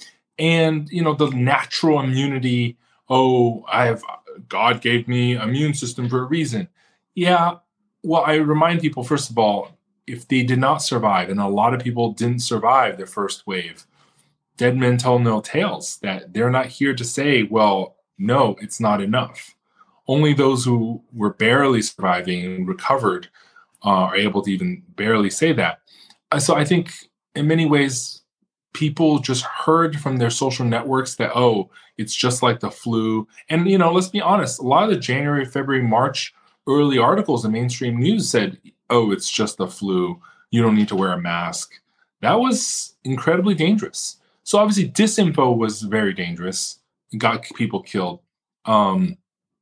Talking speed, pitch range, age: 165 wpm, 115-160 Hz, 20-39